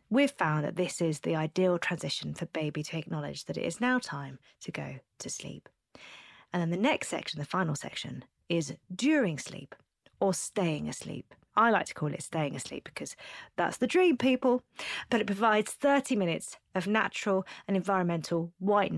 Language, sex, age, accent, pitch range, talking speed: English, female, 30-49, British, 160-210 Hz, 180 wpm